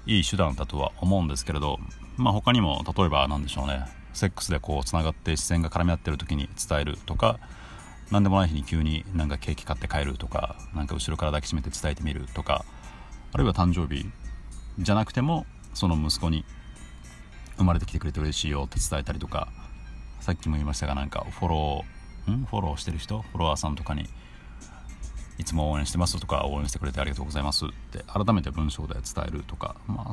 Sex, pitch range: male, 70-95 Hz